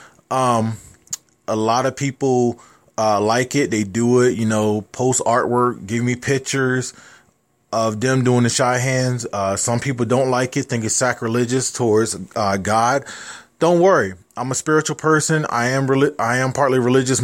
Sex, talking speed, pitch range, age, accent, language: male, 165 wpm, 120-150 Hz, 20-39, American, English